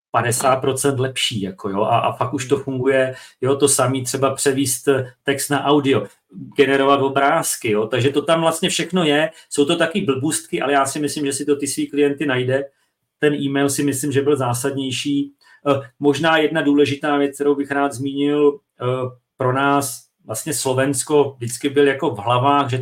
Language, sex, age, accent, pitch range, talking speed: Czech, male, 40-59, native, 120-145 Hz, 175 wpm